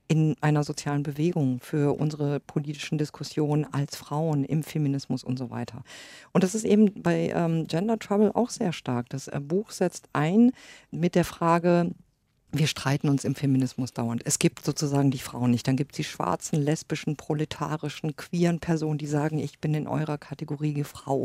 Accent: German